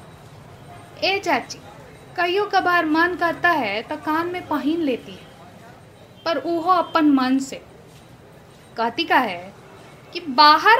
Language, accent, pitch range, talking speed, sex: Hindi, native, 235-345 Hz, 130 wpm, female